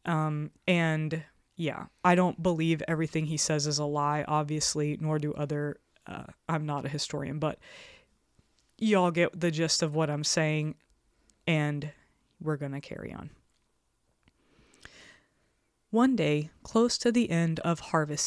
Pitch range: 150-180 Hz